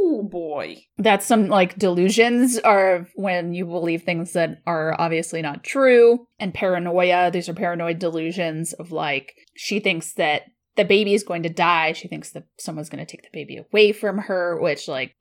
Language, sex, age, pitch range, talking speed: English, female, 30-49, 170-210 Hz, 185 wpm